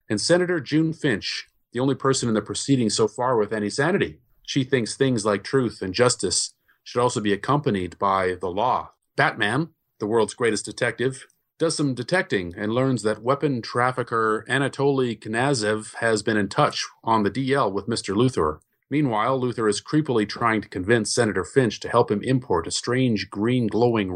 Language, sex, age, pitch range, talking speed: English, male, 40-59, 105-135 Hz, 175 wpm